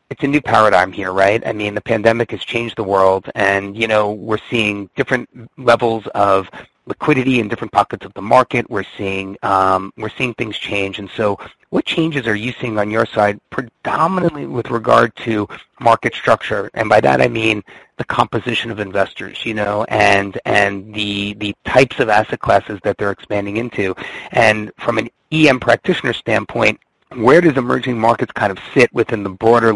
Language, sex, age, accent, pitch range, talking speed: English, male, 30-49, American, 100-120 Hz, 185 wpm